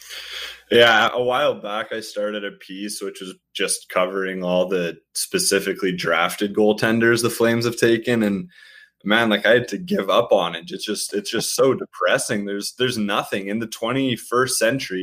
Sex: male